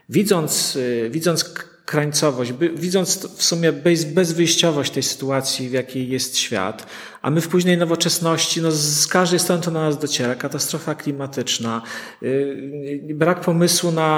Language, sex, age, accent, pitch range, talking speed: Polish, male, 40-59, native, 140-170 Hz, 135 wpm